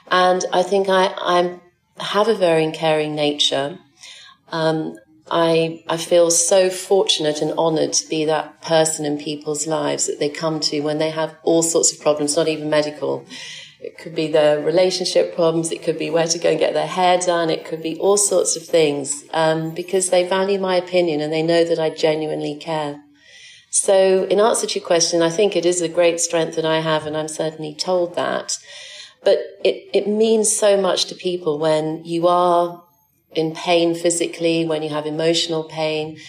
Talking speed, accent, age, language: 190 wpm, British, 40-59, English